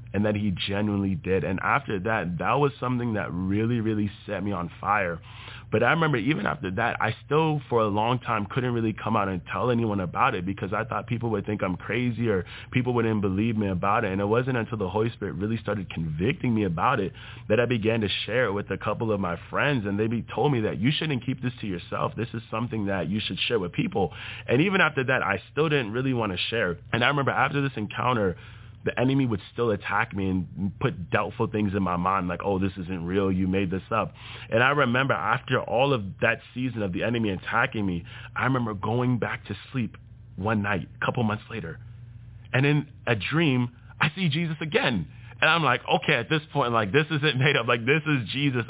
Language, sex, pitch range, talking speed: English, male, 100-125 Hz, 230 wpm